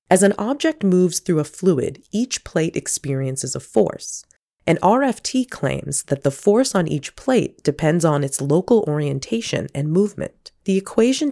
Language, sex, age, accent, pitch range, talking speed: English, female, 30-49, American, 145-200 Hz, 160 wpm